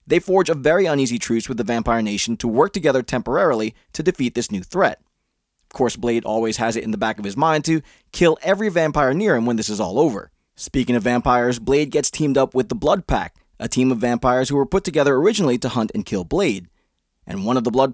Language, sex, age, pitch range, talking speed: English, male, 20-39, 115-150 Hz, 240 wpm